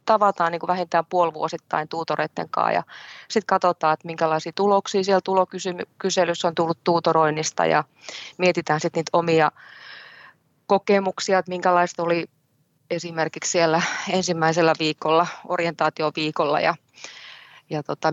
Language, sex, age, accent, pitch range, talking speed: Finnish, female, 30-49, native, 155-185 Hz, 125 wpm